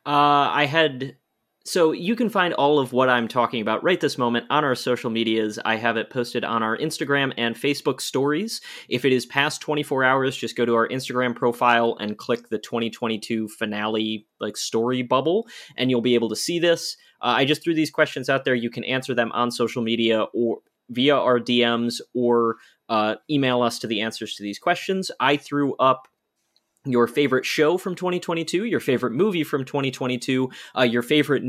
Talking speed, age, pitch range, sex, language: 195 wpm, 20-39, 120-145 Hz, male, English